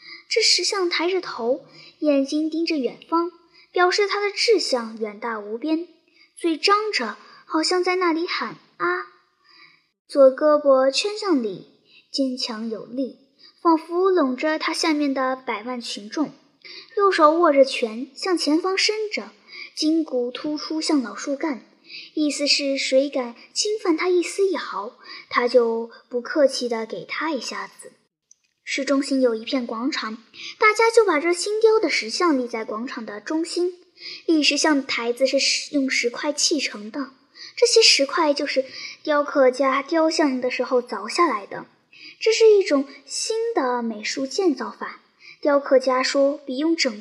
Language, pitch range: Chinese, 260-355 Hz